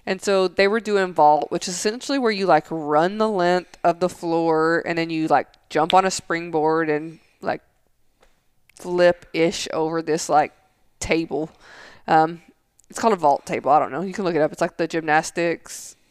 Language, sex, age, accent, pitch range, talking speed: English, female, 20-39, American, 165-200 Hz, 190 wpm